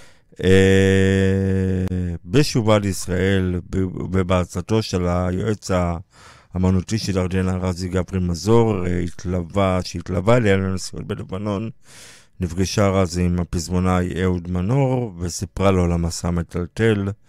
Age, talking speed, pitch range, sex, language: 50-69, 100 wpm, 90-100 Hz, male, Hebrew